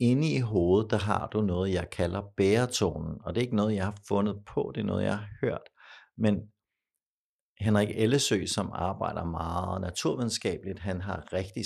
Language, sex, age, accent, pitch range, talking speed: Danish, male, 60-79, native, 95-115 Hz, 180 wpm